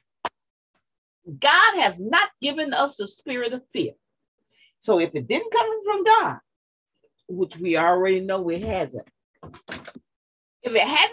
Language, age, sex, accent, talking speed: English, 40-59, female, American, 135 wpm